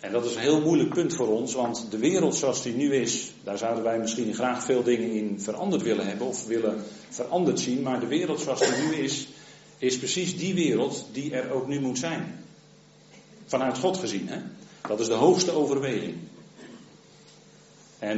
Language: Dutch